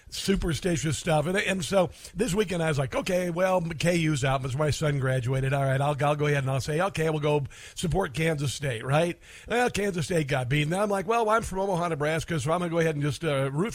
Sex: male